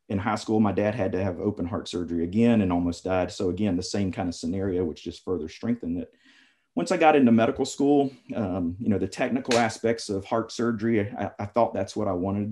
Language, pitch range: English, 100-135 Hz